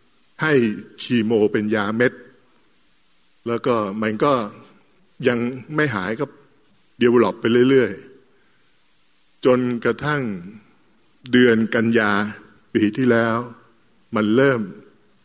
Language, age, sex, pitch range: Thai, 60-79, male, 105-130 Hz